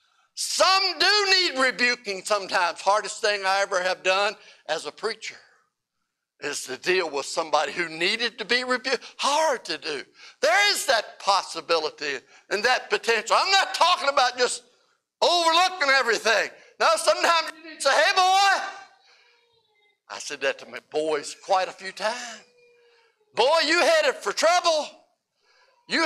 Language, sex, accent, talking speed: English, male, American, 145 wpm